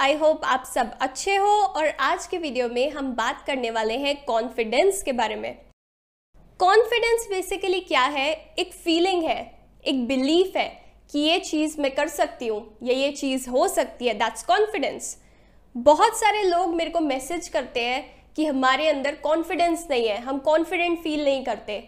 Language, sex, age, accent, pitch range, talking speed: Hindi, female, 20-39, native, 260-345 Hz, 180 wpm